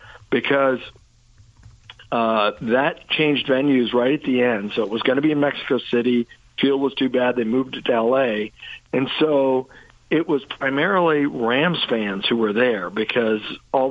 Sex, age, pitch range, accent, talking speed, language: male, 50-69, 115-140 Hz, American, 165 wpm, English